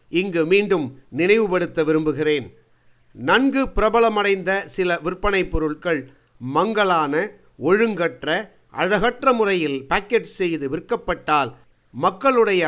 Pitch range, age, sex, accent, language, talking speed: 150-205 Hz, 50-69, male, native, Tamil, 80 wpm